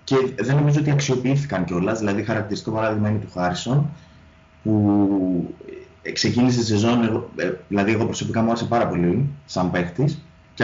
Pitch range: 95-130 Hz